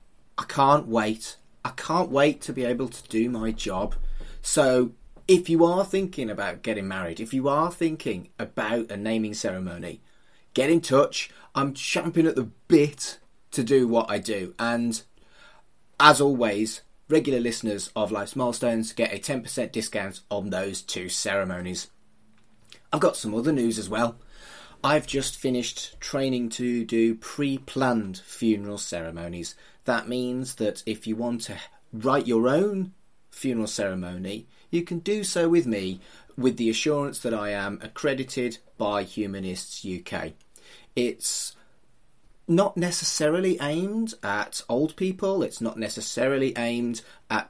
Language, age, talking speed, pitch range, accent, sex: English, 30-49, 145 wpm, 110-150 Hz, British, male